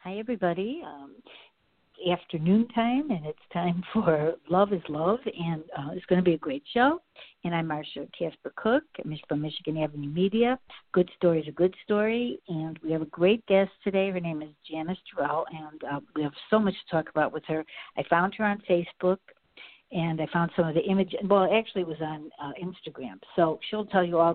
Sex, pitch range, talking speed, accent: female, 160-195 Hz, 205 wpm, American